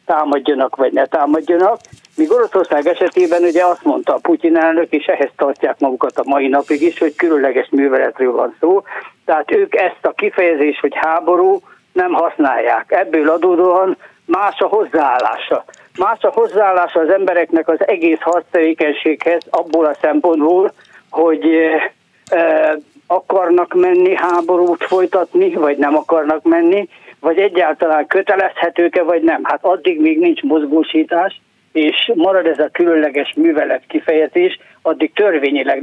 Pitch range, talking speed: 150-205 Hz, 130 wpm